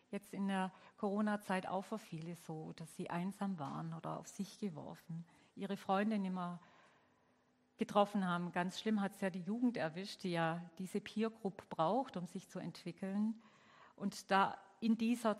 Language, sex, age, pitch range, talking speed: German, female, 50-69, 180-215 Hz, 165 wpm